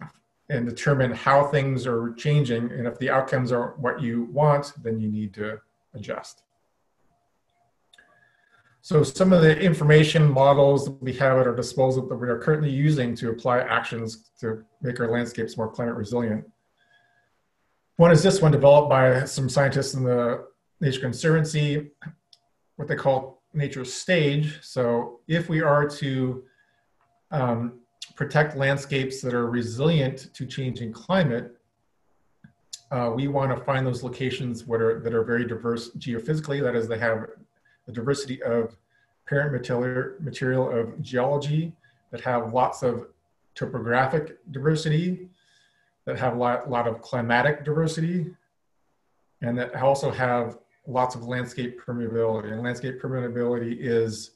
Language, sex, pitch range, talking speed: English, male, 120-145 Hz, 140 wpm